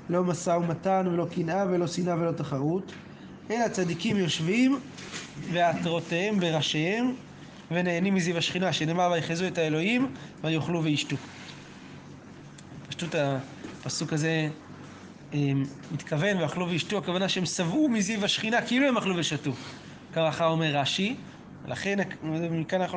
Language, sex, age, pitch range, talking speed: Hebrew, male, 20-39, 155-205 Hz, 120 wpm